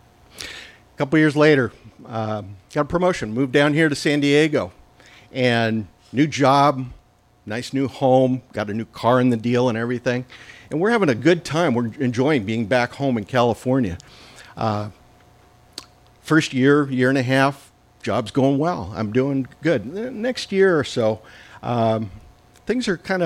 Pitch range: 105-135 Hz